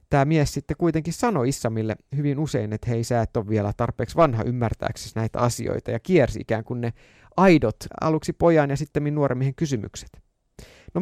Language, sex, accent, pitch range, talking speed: Finnish, male, native, 115-155 Hz, 175 wpm